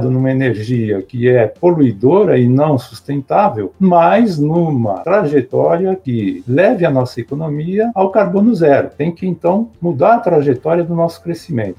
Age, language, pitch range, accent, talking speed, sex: 60-79, Portuguese, 125-165 Hz, Brazilian, 145 wpm, male